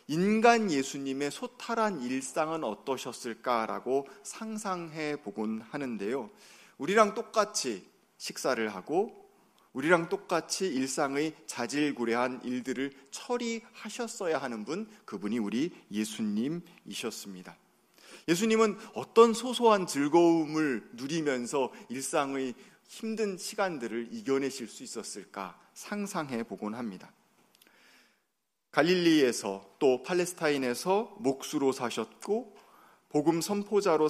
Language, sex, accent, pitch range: Korean, male, native, 130-205 Hz